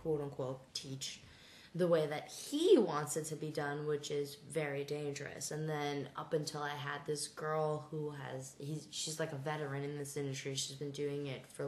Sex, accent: female, American